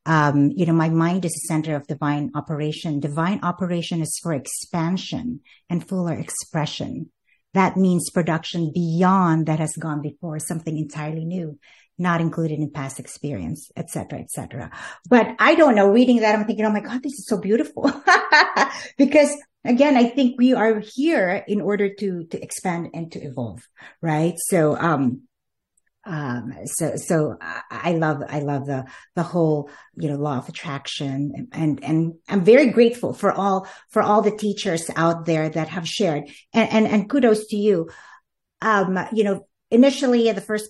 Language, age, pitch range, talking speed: English, 50-69, 155-210 Hz, 170 wpm